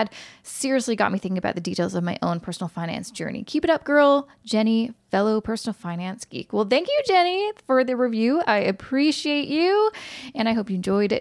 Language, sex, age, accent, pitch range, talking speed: English, female, 20-39, American, 205-280 Hz, 200 wpm